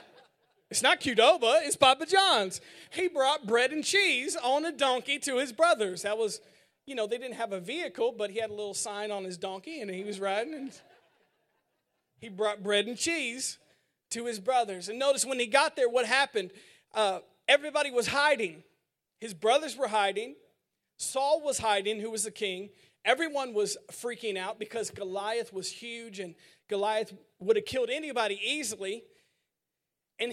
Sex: male